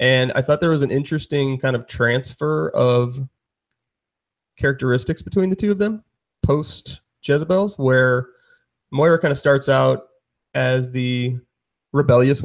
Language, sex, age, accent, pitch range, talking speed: English, male, 30-49, American, 120-140 Hz, 135 wpm